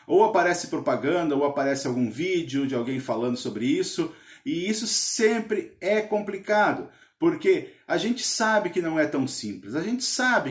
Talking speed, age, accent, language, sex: 165 wpm, 40-59, Brazilian, Portuguese, male